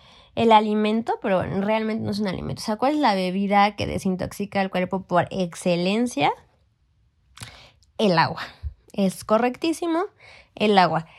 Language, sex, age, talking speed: Spanish, female, 20-39, 145 wpm